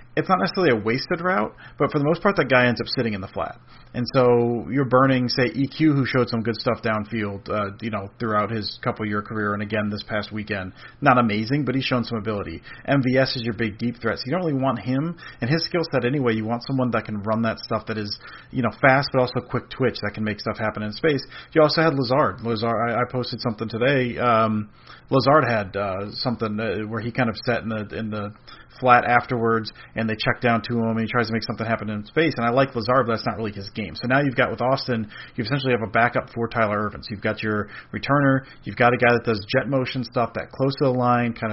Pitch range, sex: 110-130 Hz, male